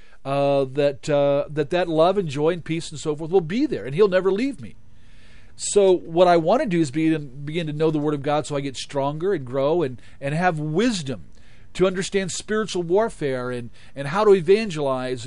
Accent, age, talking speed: American, 40-59, 215 wpm